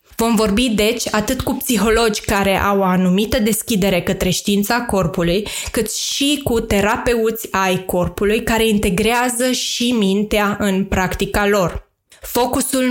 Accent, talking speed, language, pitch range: native, 130 wpm, Romanian, 195-230 Hz